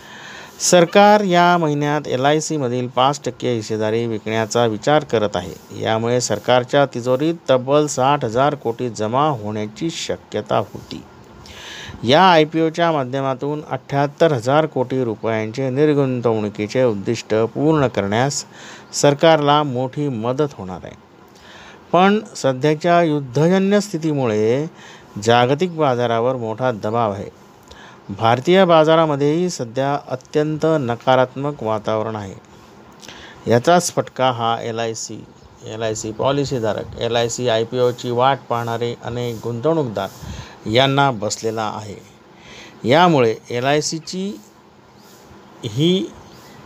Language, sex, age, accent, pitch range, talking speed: Marathi, male, 50-69, native, 115-150 Hz, 110 wpm